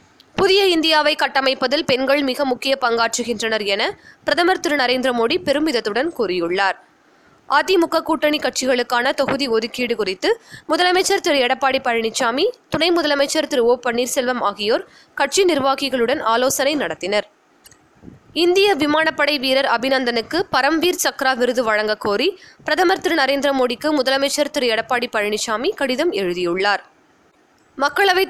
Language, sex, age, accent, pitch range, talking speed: Tamil, female, 20-39, native, 240-310 Hz, 110 wpm